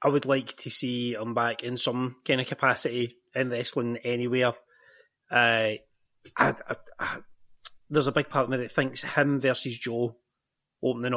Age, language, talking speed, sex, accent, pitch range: 30-49, English, 165 wpm, male, British, 120-145 Hz